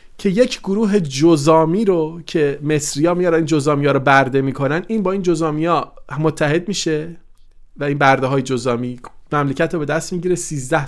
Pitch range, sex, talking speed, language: 145-190 Hz, male, 160 wpm, Persian